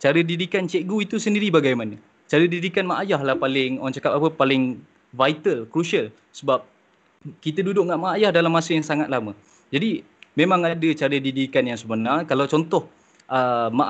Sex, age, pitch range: male, 20-39, 135-165 Hz